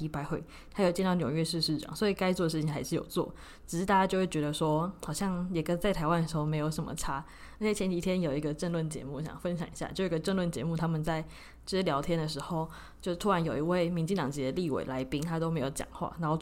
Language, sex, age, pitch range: Chinese, female, 20-39, 155-185 Hz